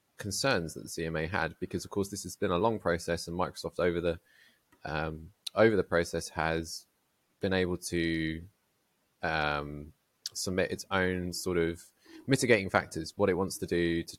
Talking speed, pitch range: 170 wpm, 85-100 Hz